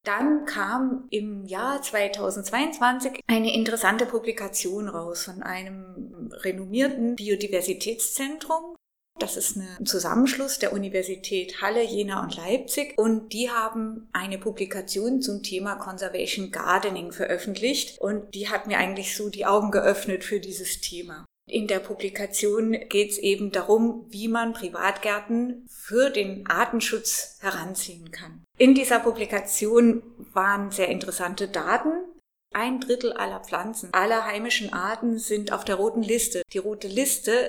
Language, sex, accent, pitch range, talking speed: German, female, German, 195-235 Hz, 130 wpm